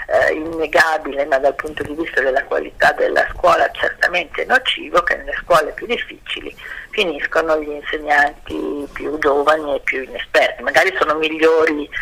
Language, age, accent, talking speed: Italian, 40-59, native, 140 wpm